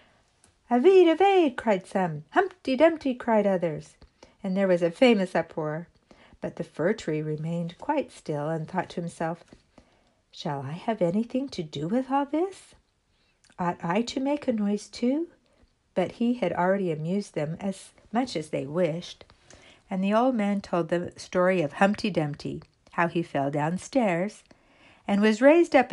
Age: 60-79